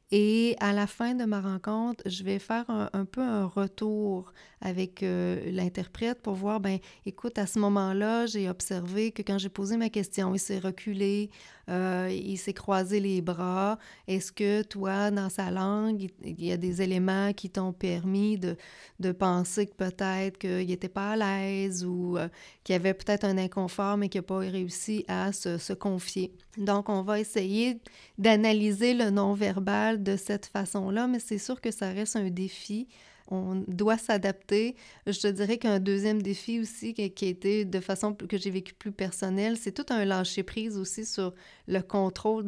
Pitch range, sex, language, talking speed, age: 185-210 Hz, female, French, 180 wpm, 30-49